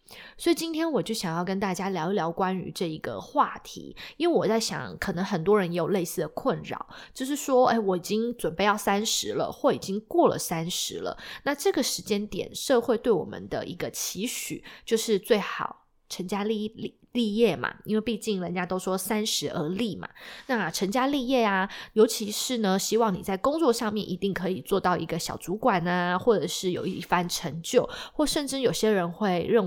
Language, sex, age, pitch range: Chinese, female, 20-39, 180-235 Hz